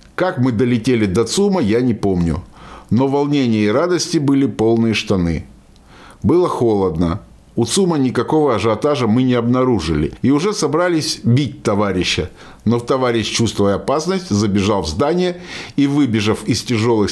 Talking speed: 145 wpm